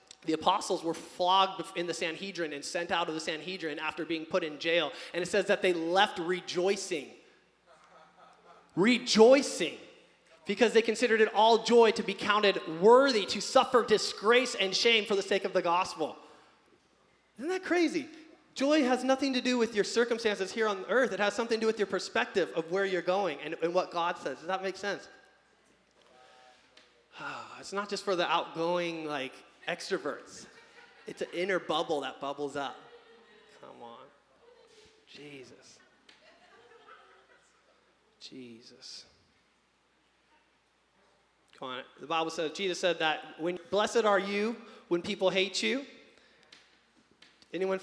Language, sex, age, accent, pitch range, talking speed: English, male, 30-49, American, 175-250 Hz, 150 wpm